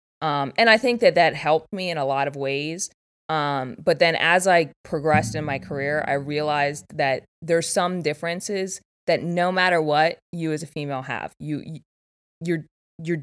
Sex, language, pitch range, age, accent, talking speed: female, English, 140-165 Hz, 20-39, American, 180 wpm